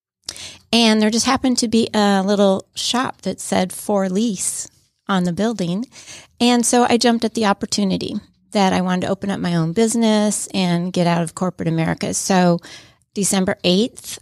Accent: American